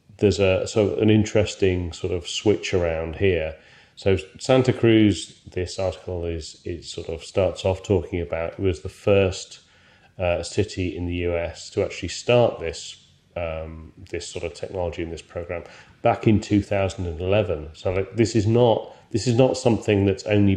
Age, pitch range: 30-49, 85-105 Hz